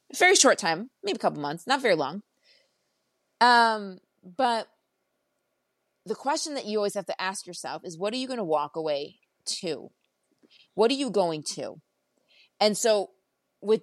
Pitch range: 175-235 Hz